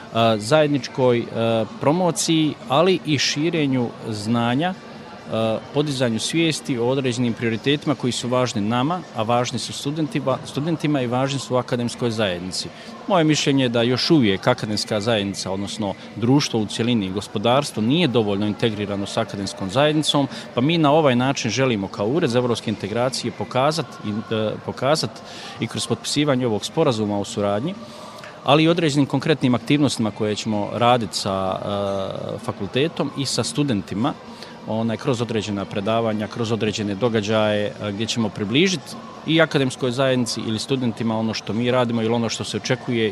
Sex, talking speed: male, 140 wpm